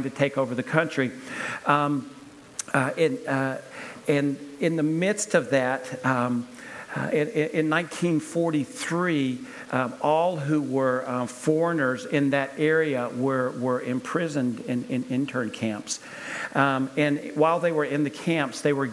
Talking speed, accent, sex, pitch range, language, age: 140 wpm, American, male, 130-155 Hz, Polish, 50-69